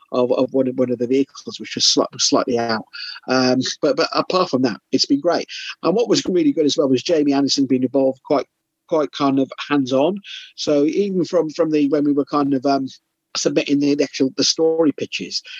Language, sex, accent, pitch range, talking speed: English, male, British, 130-155 Hz, 215 wpm